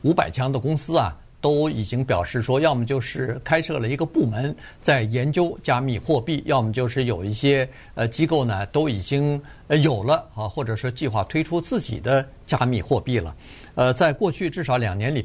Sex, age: male, 50-69